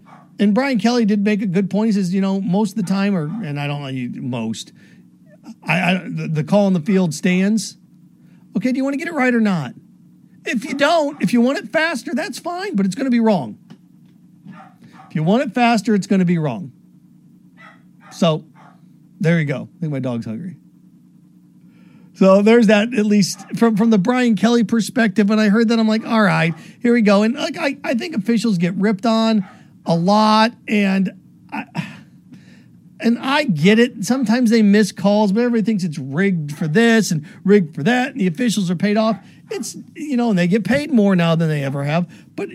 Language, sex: English, male